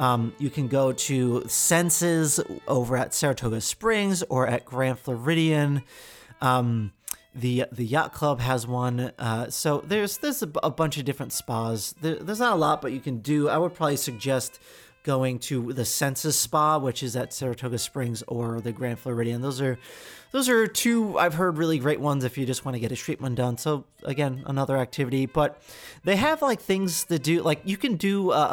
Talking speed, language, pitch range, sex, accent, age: 200 wpm, English, 125-165 Hz, male, American, 30-49